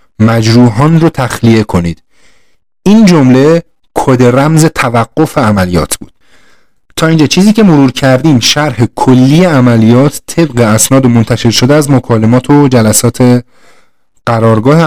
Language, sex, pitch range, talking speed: Persian, male, 115-145 Hz, 115 wpm